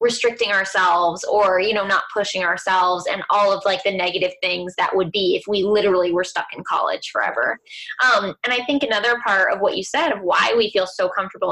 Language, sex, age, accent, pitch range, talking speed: English, female, 20-39, American, 190-255 Hz, 220 wpm